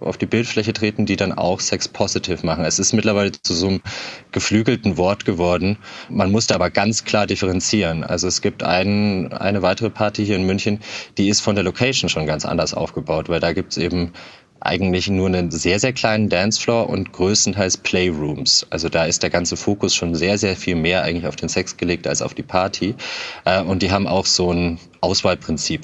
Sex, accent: male, German